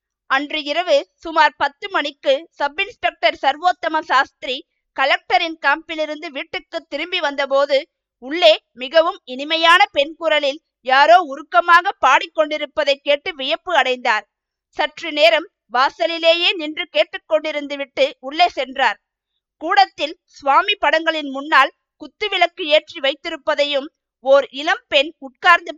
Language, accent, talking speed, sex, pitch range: Tamil, native, 90 wpm, female, 275-335 Hz